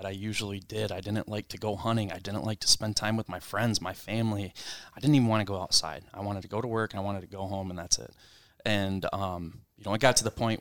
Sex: male